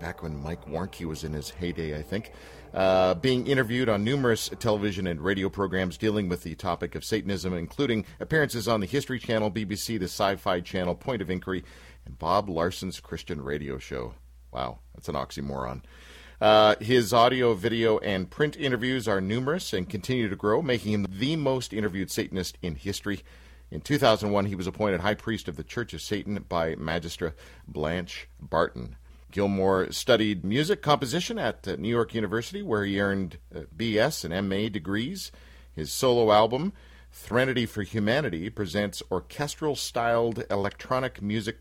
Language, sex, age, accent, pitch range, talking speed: English, male, 50-69, American, 80-115 Hz, 165 wpm